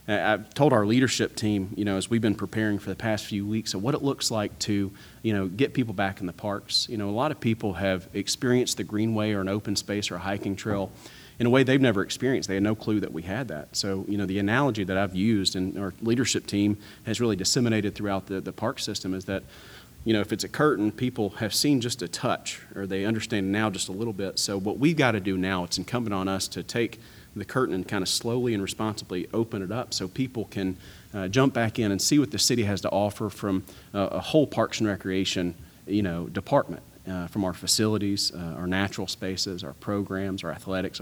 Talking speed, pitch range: 240 wpm, 95-110 Hz